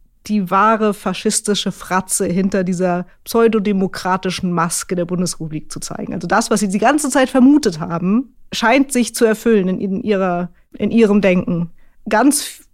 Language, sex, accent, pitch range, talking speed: German, female, German, 185-220 Hz, 145 wpm